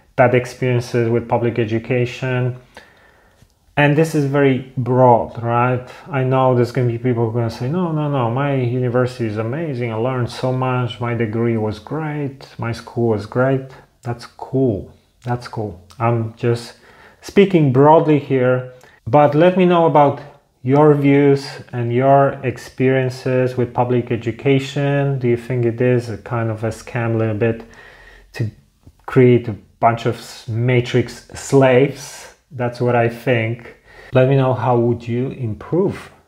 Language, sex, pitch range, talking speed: English, male, 120-140 Hz, 155 wpm